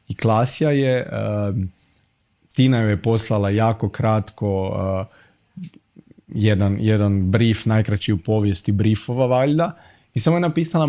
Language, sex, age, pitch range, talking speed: Croatian, male, 20-39, 105-125 Hz, 115 wpm